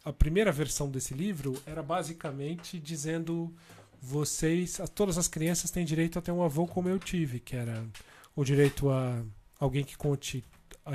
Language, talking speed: Portuguese, 165 wpm